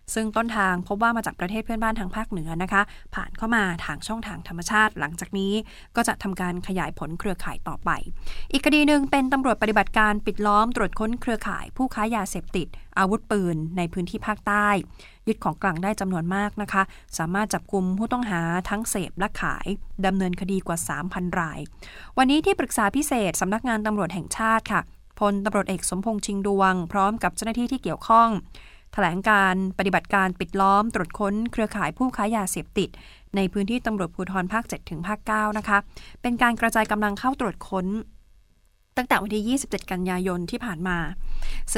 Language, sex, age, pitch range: Thai, female, 20-39, 185-225 Hz